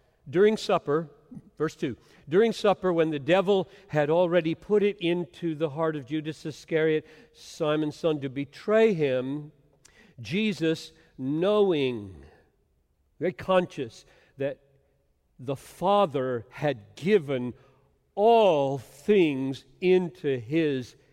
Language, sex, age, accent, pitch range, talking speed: English, male, 50-69, American, 140-215 Hz, 105 wpm